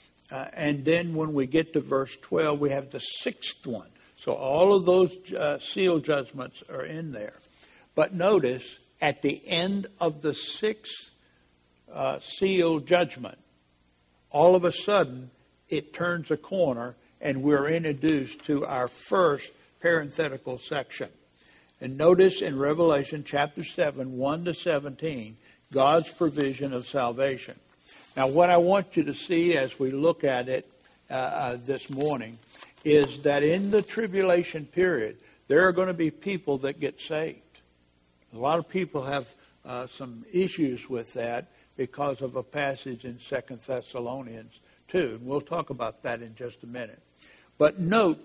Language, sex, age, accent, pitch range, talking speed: English, male, 60-79, American, 130-170 Hz, 155 wpm